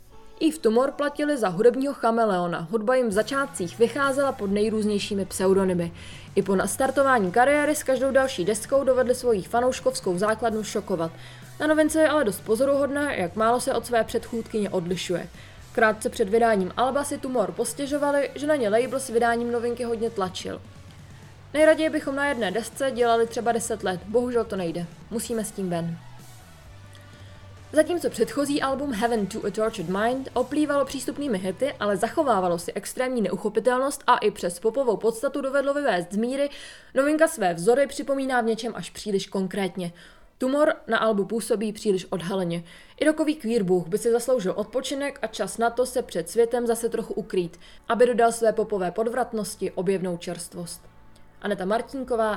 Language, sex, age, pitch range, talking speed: Czech, female, 20-39, 190-260 Hz, 160 wpm